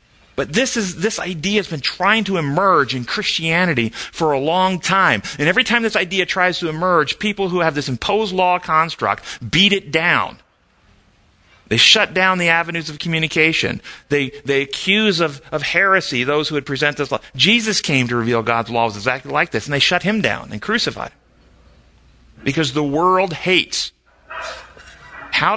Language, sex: English, male